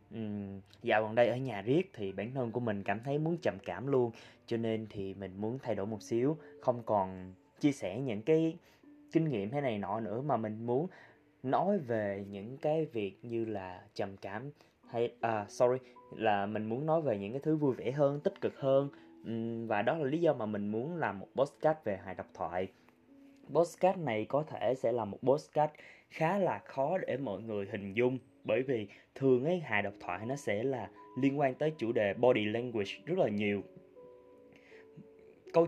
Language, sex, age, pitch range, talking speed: Vietnamese, male, 20-39, 105-145 Hz, 205 wpm